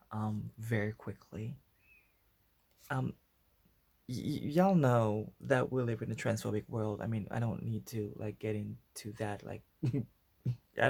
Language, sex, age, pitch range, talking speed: English, male, 20-39, 110-130 Hz, 140 wpm